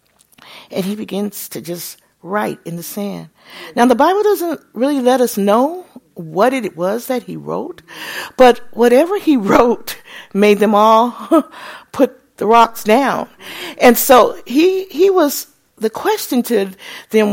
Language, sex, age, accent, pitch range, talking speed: English, female, 50-69, American, 190-270 Hz, 150 wpm